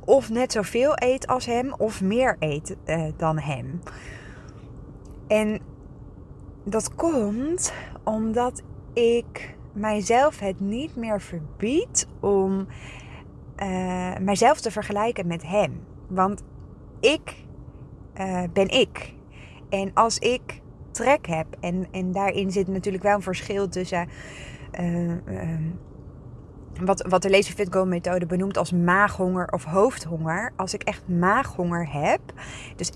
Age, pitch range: 20-39, 185-230 Hz